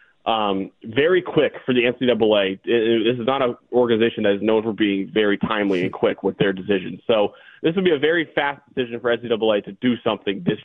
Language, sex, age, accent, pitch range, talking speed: English, male, 20-39, American, 110-130 Hz, 220 wpm